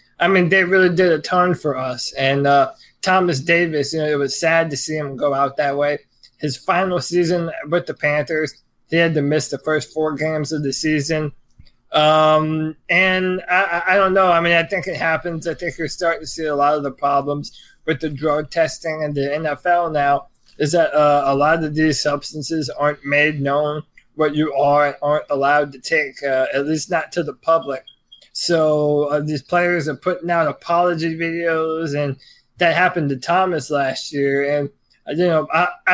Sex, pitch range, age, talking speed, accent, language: male, 145-170 Hz, 20-39, 200 wpm, American, English